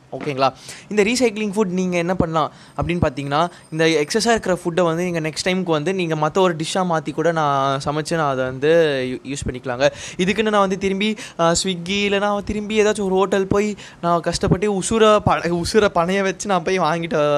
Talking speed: 180 wpm